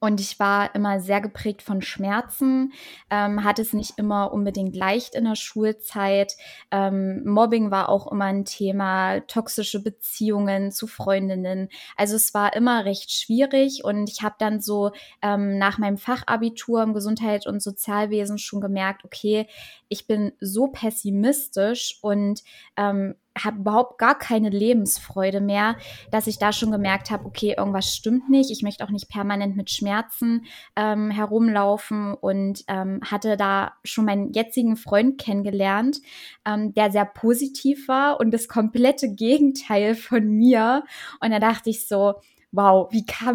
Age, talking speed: 20-39, 150 wpm